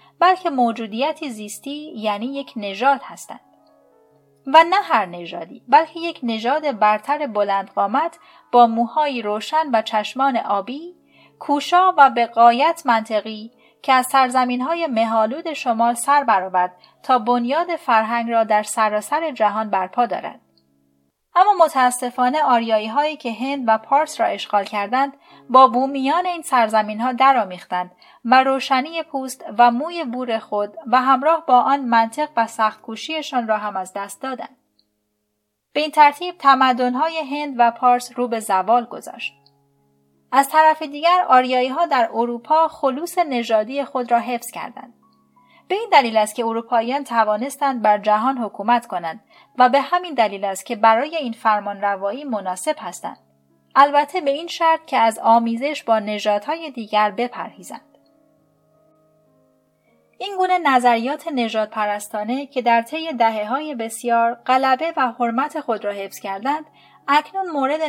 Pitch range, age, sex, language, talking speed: 210-285 Hz, 30-49, female, Persian, 135 wpm